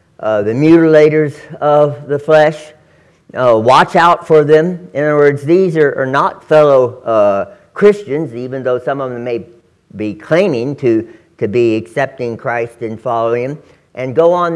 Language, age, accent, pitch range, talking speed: English, 60-79, American, 140-185 Hz, 165 wpm